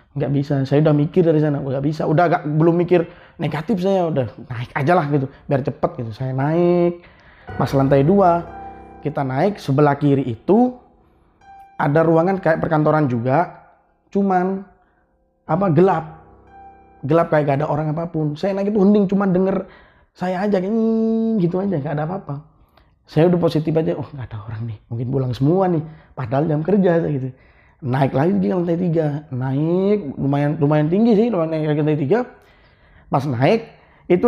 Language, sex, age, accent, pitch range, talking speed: Indonesian, male, 20-39, native, 135-180 Hz, 170 wpm